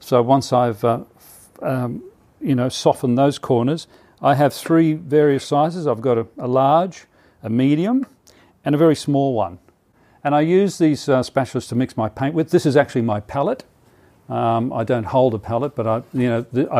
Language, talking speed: English, 195 wpm